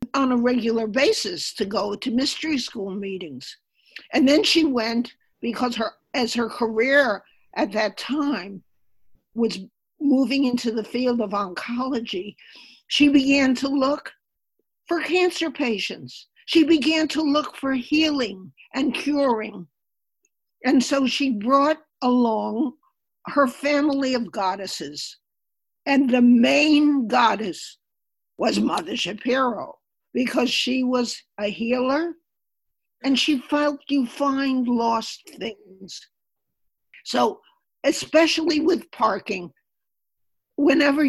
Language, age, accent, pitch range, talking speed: English, 50-69, American, 230-290 Hz, 110 wpm